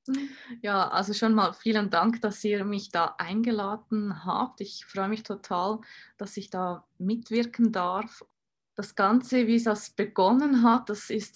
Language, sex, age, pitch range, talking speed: German, female, 20-39, 190-225 Hz, 160 wpm